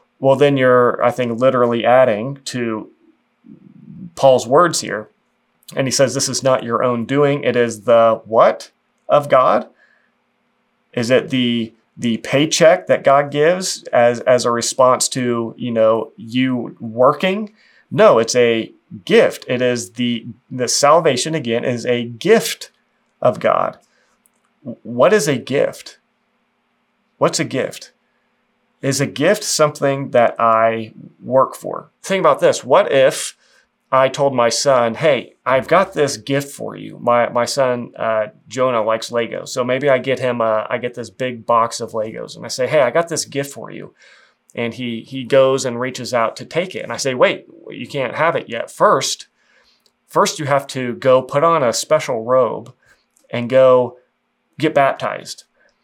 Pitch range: 120-140 Hz